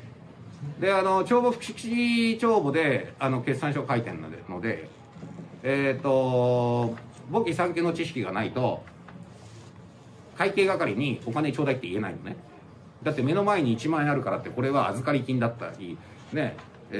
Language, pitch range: Japanese, 120-180 Hz